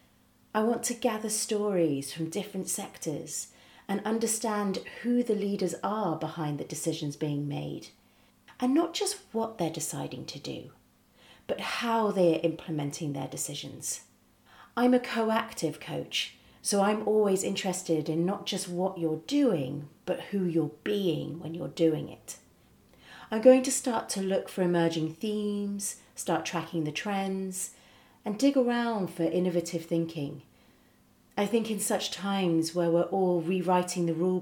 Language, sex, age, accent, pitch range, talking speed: English, female, 40-59, British, 155-210 Hz, 150 wpm